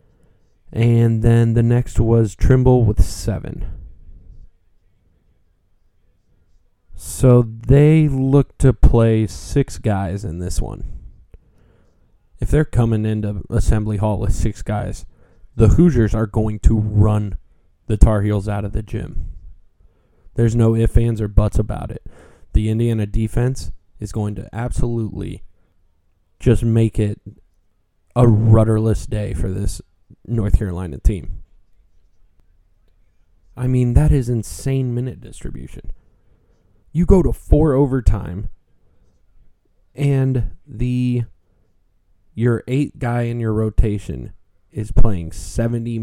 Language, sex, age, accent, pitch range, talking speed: English, male, 20-39, American, 90-115 Hz, 115 wpm